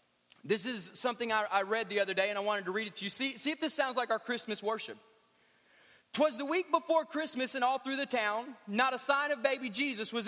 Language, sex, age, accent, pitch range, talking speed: English, male, 30-49, American, 220-265 Hz, 245 wpm